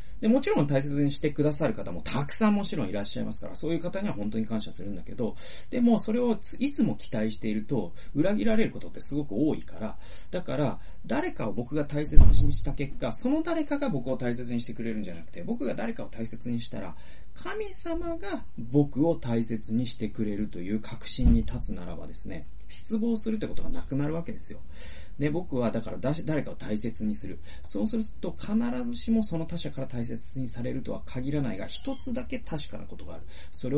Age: 40-59